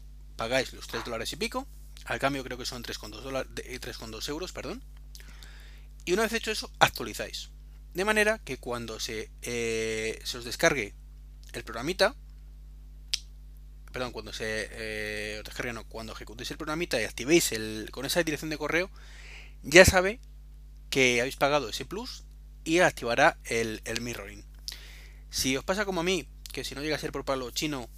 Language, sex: Spanish, male